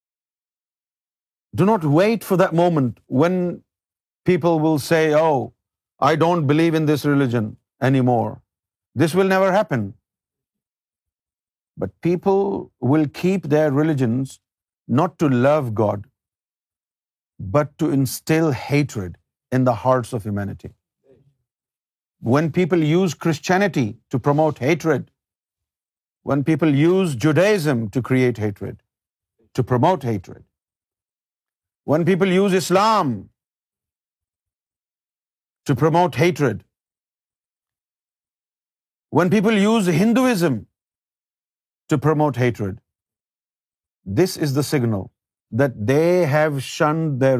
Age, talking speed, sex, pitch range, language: 50-69, 105 wpm, male, 115-165 Hz, Urdu